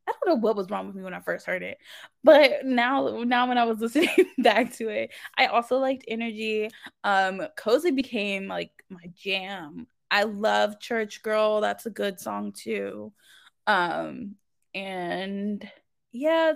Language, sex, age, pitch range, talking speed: English, female, 20-39, 200-260 Hz, 165 wpm